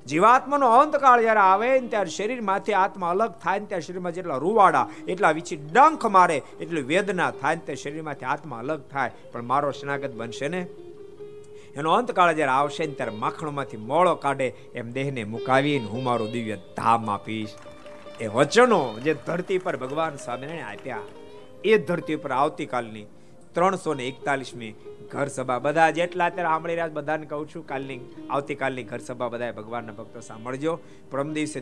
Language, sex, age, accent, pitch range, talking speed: Gujarati, male, 50-69, native, 130-195 Hz, 100 wpm